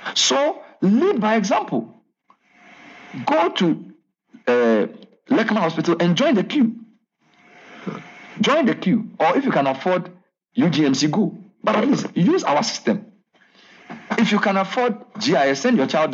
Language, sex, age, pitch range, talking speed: English, male, 60-79, 175-230 Hz, 135 wpm